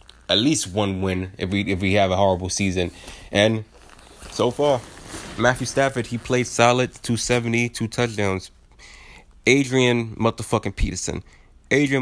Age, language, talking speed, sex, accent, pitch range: 20-39, English, 140 wpm, male, American, 90-115 Hz